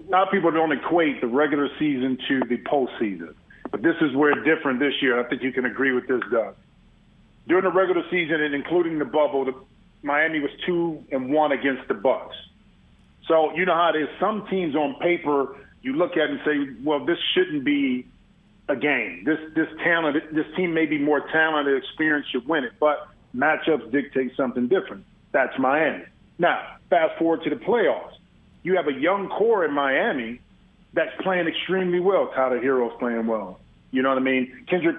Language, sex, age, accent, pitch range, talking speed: English, male, 40-59, American, 140-180 Hz, 195 wpm